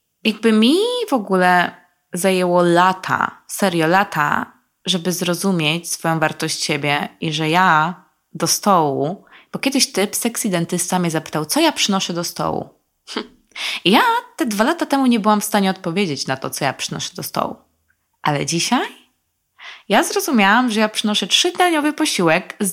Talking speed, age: 150 wpm, 20-39